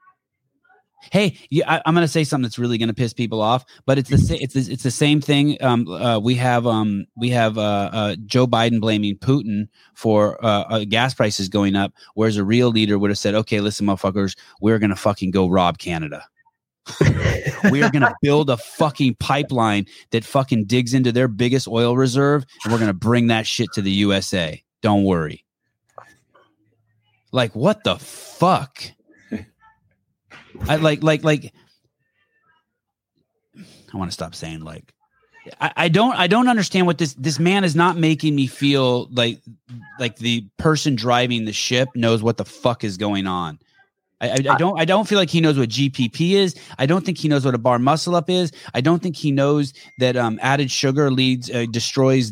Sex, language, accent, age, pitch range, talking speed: male, English, American, 30-49, 110-155 Hz, 190 wpm